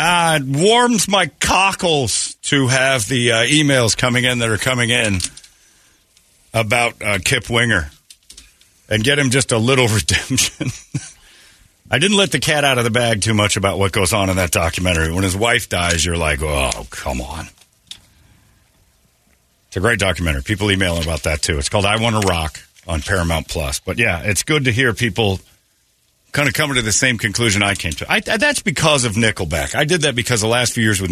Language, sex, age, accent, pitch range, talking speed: English, male, 50-69, American, 95-140 Hz, 195 wpm